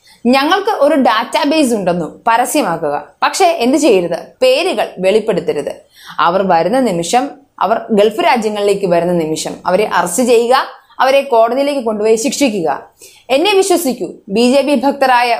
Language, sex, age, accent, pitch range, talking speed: Malayalam, female, 20-39, native, 210-280 Hz, 115 wpm